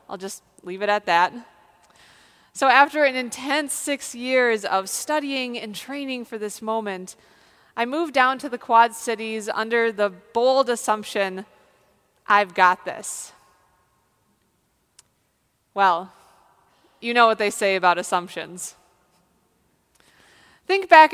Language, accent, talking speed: English, American, 120 wpm